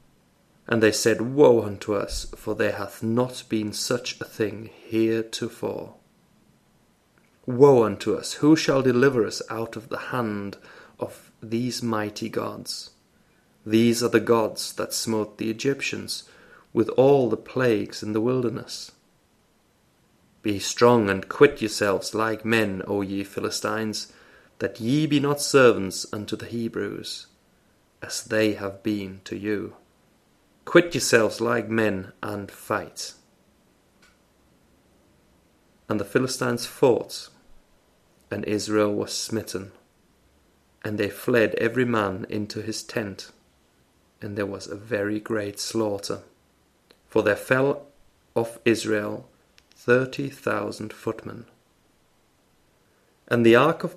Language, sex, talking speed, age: English, male, 120 wpm, 30-49